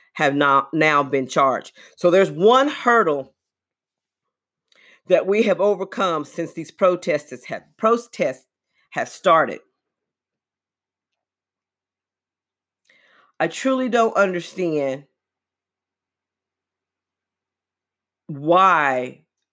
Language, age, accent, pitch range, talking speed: English, 40-59, American, 135-220 Hz, 75 wpm